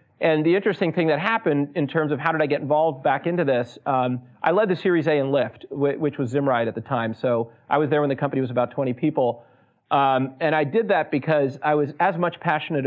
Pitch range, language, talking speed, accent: 130-155 Hz, English, 245 wpm, American